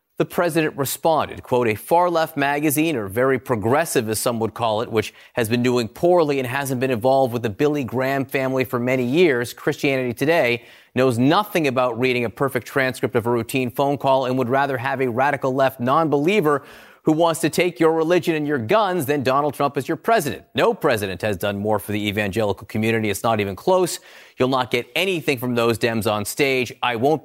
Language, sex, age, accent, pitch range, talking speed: English, male, 30-49, American, 120-145 Hz, 205 wpm